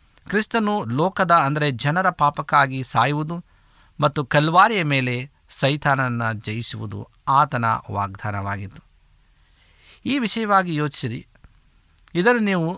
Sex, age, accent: male, 50-69, native